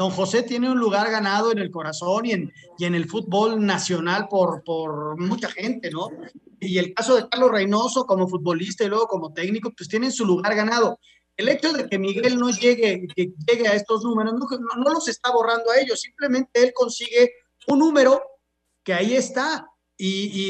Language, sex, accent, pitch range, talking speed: Spanish, male, Mexican, 195-255 Hz, 195 wpm